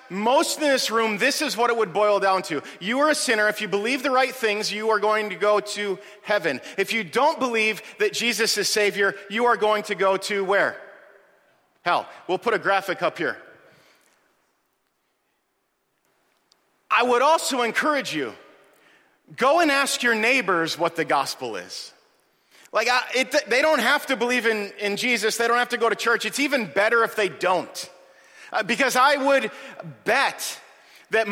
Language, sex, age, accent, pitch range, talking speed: English, male, 40-59, American, 205-260 Hz, 175 wpm